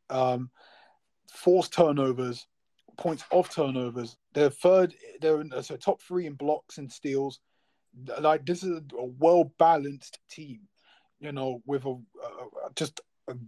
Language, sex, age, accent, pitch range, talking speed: English, male, 20-39, British, 135-165 Hz, 140 wpm